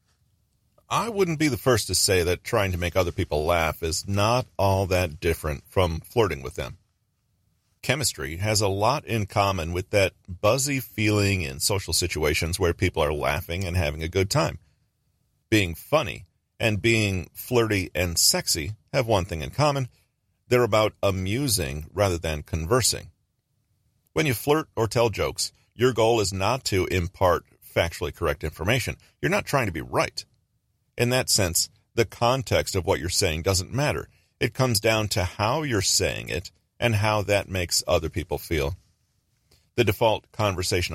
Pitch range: 90-115 Hz